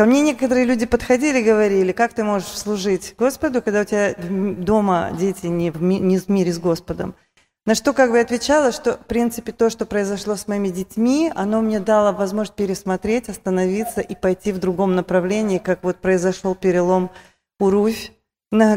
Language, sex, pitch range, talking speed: Russian, female, 185-225 Hz, 170 wpm